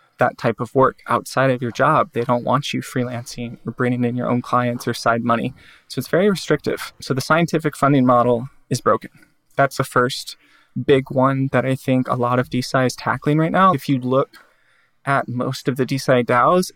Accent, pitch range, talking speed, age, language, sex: American, 125-140 Hz, 210 wpm, 20-39, English, male